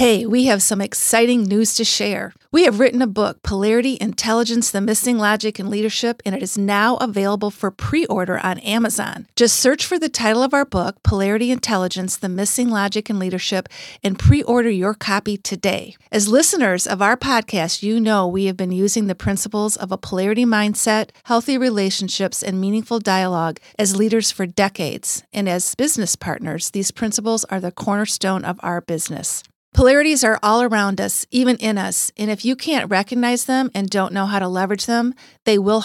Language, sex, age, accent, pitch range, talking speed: English, female, 50-69, American, 195-235 Hz, 185 wpm